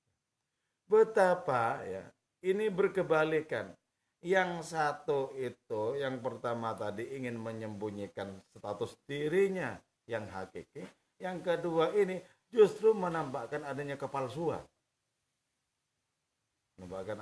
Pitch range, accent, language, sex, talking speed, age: 100-155 Hz, Indonesian, English, male, 85 wpm, 40-59